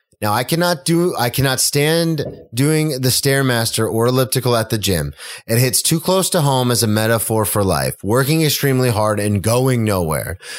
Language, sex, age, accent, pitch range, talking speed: English, male, 30-49, American, 110-145 Hz, 180 wpm